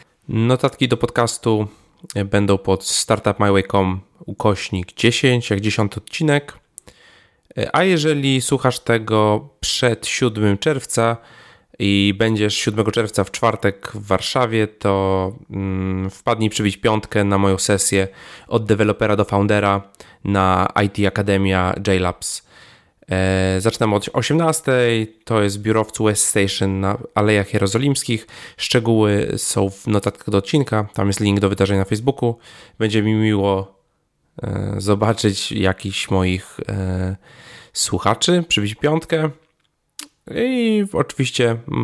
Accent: native